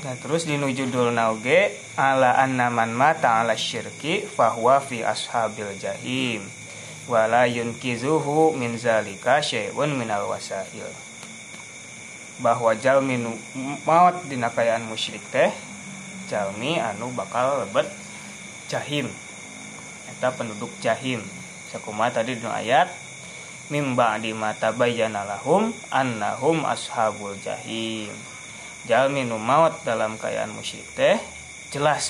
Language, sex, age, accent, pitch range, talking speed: Indonesian, male, 20-39, native, 110-135 Hz, 100 wpm